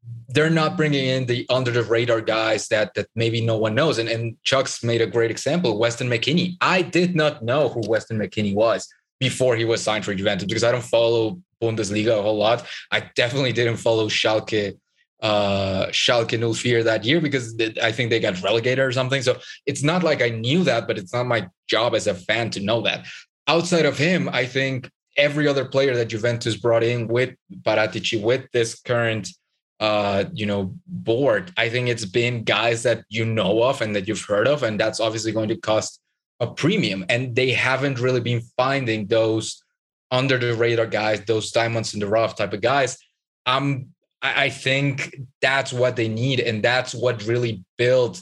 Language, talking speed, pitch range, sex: English, 195 wpm, 110-130 Hz, male